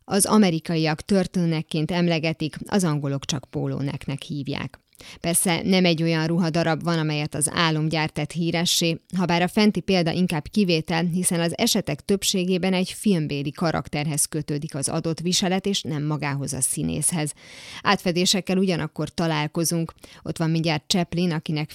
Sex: female